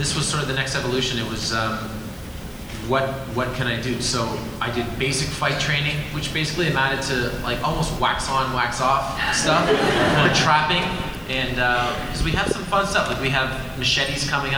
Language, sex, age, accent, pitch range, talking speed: English, male, 20-39, American, 120-145 Hz, 200 wpm